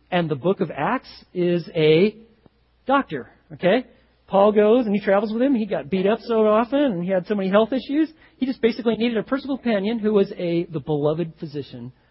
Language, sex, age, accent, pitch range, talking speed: English, male, 40-59, American, 150-225 Hz, 210 wpm